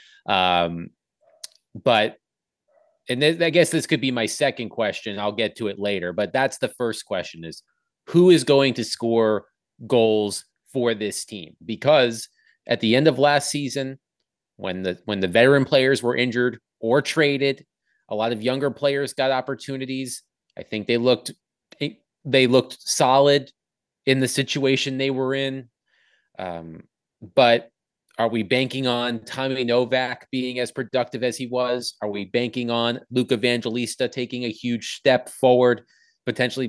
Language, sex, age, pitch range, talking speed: English, male, 30-49, 115-135 Hz, 155 wpm